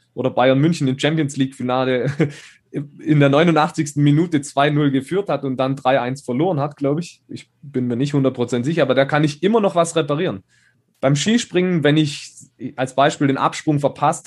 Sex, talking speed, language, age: male, 175 wpm, German, 20-39